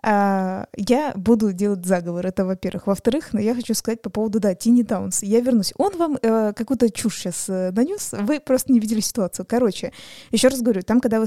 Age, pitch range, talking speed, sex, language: 20-39, 200-245 Hz, 195 wpm, female, Russian